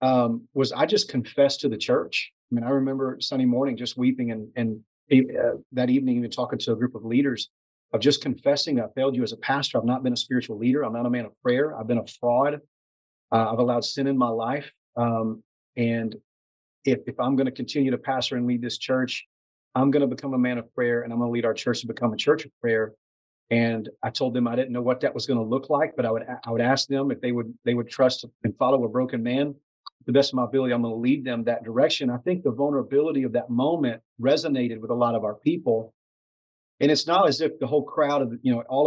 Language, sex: English, male